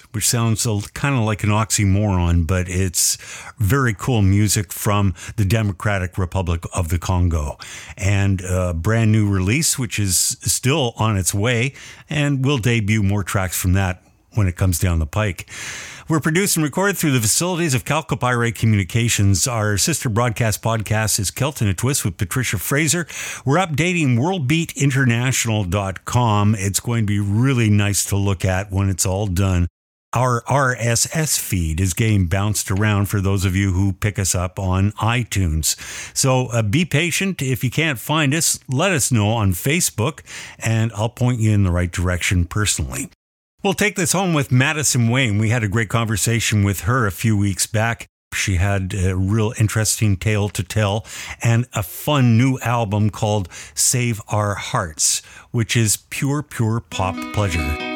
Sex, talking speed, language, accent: male, 165 wpm, English, American